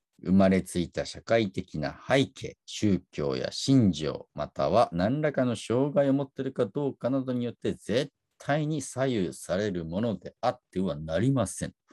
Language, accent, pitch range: Japanese, native, 95-150 Hz